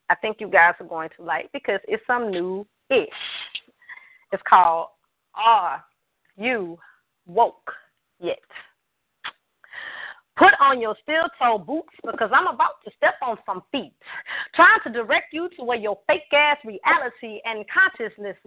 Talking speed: 140 wpm